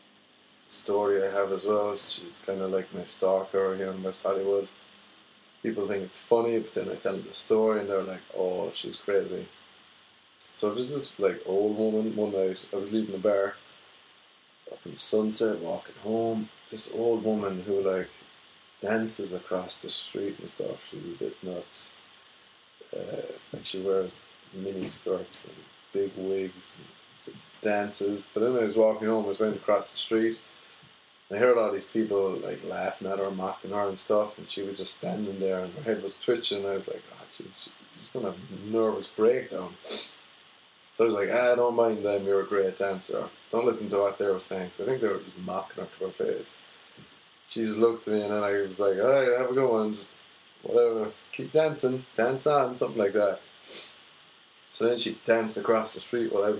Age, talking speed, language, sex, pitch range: 20-39, 200 wpm, English, male, 100-120 Hz